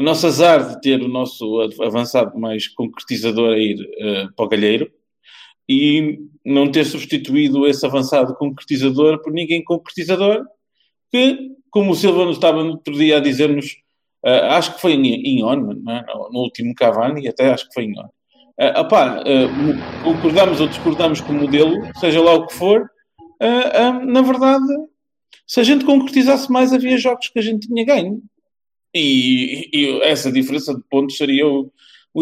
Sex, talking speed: male, 170 wpm